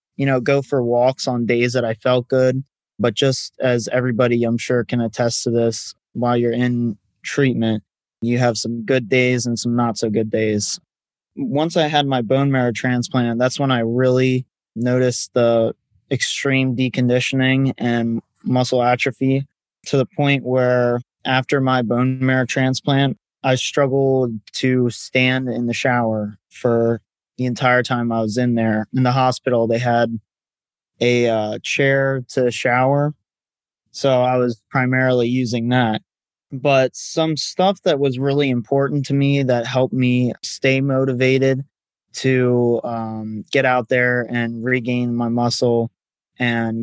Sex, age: male, 20-39